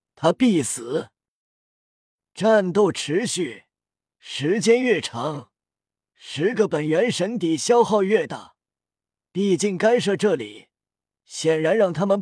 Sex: male